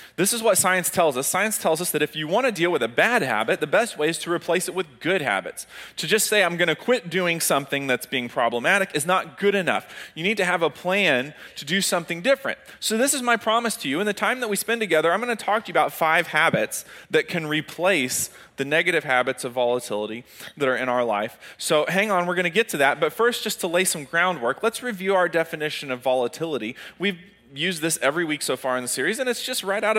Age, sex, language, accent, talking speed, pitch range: 30-49, male, English, American, 255 wpm, 135-185 Hz